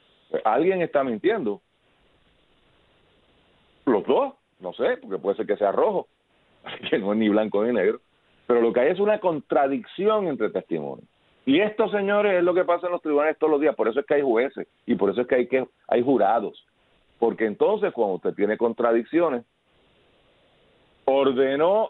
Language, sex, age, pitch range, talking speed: Spanish, male, 50-69, 110-185 Hz, 180 wpm